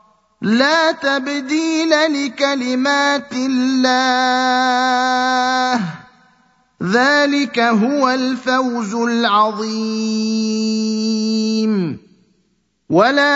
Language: Arabic